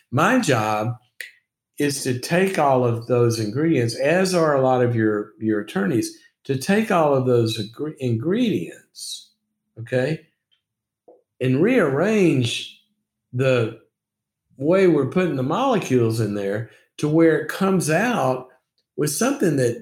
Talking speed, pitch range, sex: 125 wpm, 120-165 Hz, male